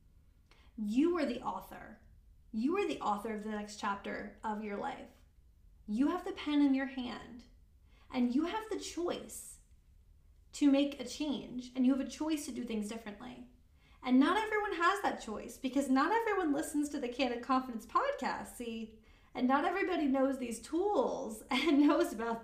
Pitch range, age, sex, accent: 210-275 Hz, 30-49, female, American